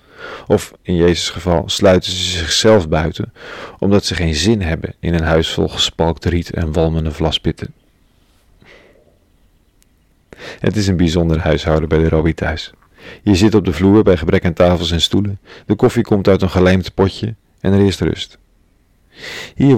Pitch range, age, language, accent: 85-100 Hz, 40-59, Dutch, Dutch